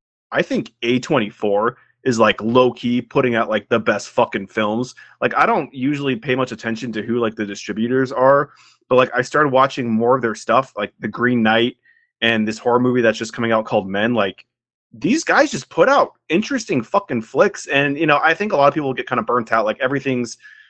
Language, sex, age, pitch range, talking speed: English, male, 20-39, 110-125 Hz, 215 wpm